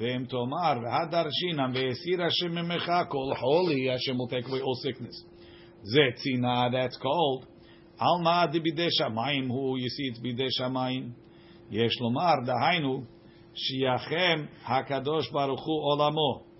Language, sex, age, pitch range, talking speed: English, male, 50-69, 130-170 Hz, 45 wpm